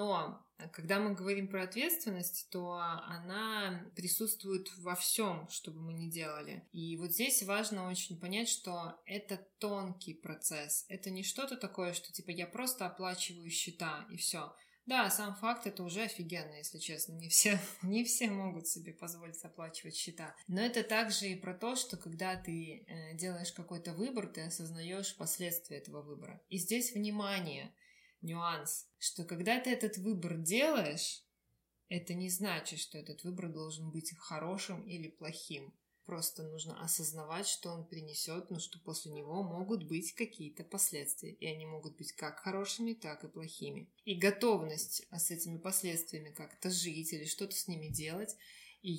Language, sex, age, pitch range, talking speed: Russian, female, 20-39, 165-200 Hz, 160 wpm